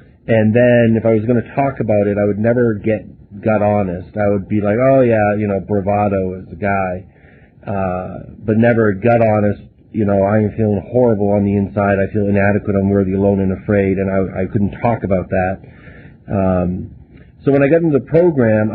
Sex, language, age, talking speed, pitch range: male, English, 40-59, 205 wpm, 100-115 Hz